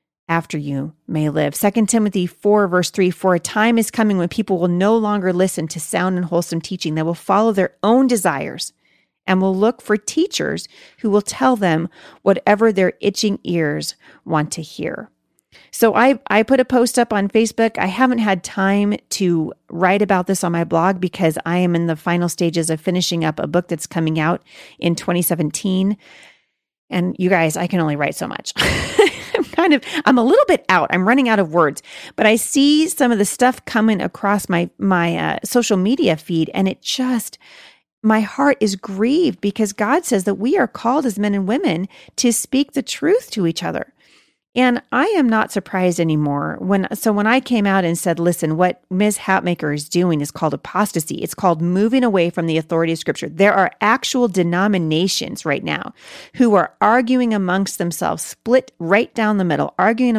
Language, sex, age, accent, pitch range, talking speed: English, female, 40-59, American, 170-220 Hz, 190 wpm